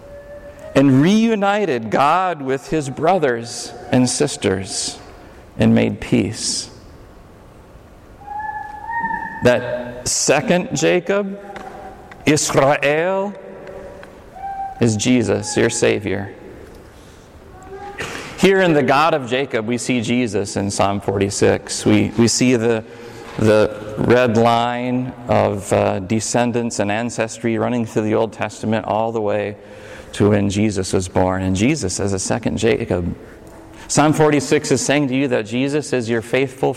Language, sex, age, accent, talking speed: English, male, 40-59, American, 120 wpm